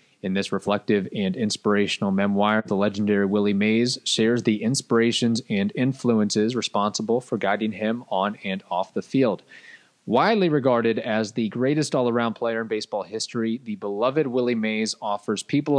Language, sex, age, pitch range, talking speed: English, male, 30-49, 105-130 Hz, 150 wpm